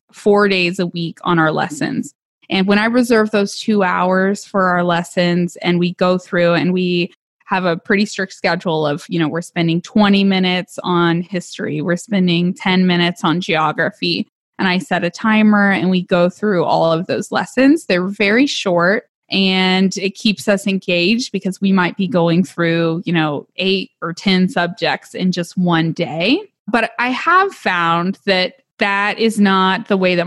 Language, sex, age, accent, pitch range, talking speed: English, female, 20-39, American, 175-205 Hz, 180 wpm